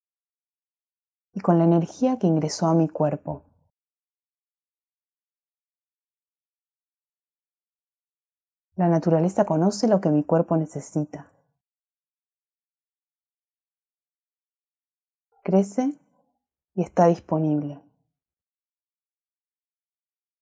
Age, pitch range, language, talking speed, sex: 30-49, 155-210 Hz, Spanish, 60 wpm, female